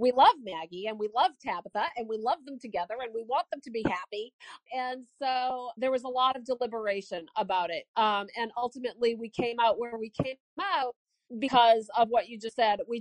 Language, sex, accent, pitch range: English, female, American, 205-255 Hz